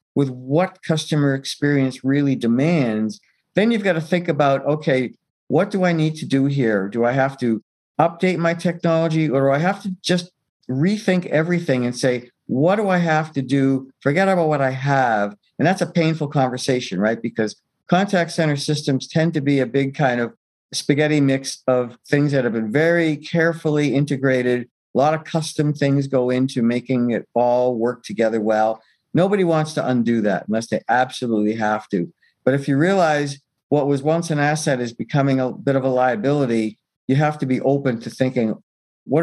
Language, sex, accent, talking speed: English, male, American, 185 wpm